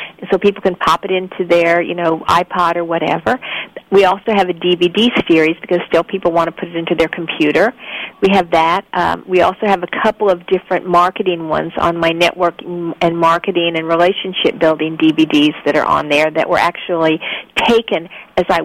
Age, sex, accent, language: 50-69, female, American, English